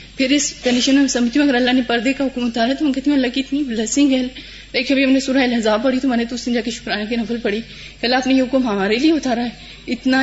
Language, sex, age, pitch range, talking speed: Urdu, female, 20-39, 225-265 Hz, 250 wpm